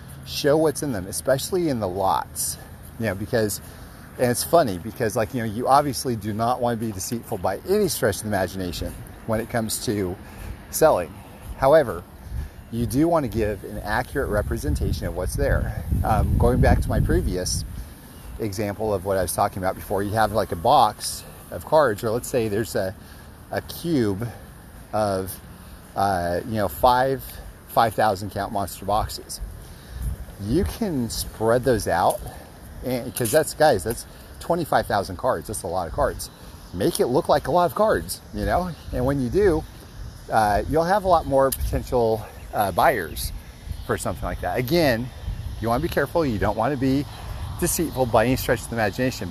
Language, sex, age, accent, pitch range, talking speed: English, male, 40-59, American, 95-125 Hz, 180 wpm